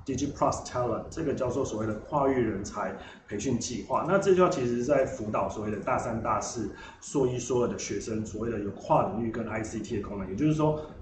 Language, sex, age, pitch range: Chinese, male, 20-39, 110-135 Hz